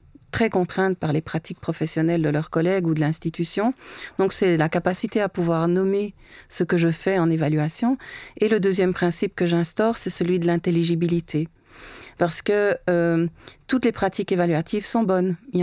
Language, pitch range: French, 170-205 Hz